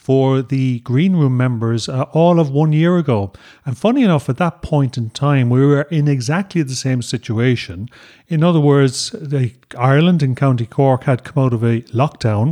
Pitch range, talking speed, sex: 125-160 Hz, 185 wpm, male